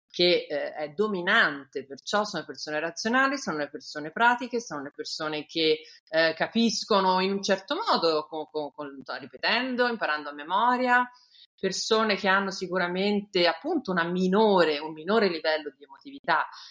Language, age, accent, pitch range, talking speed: Italian, 40-59, native, 150-200 Hz, 145 wpm